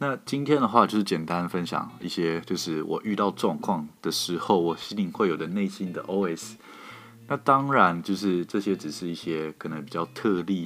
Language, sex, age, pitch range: Chinese, male, 20-39, 85-105 Hz